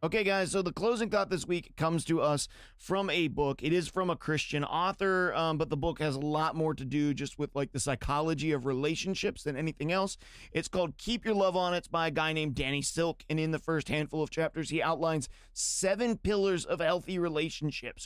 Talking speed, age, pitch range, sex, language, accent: 225 wpm, 30-49, 145-175 Hz, male, English, American